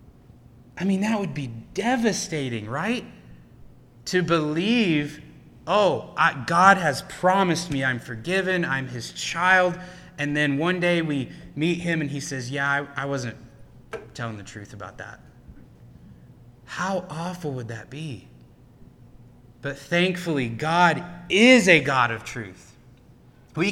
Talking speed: 130 wpm